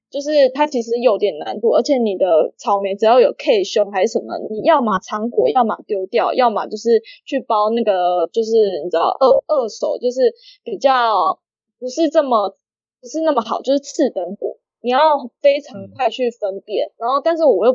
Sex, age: female, 10-29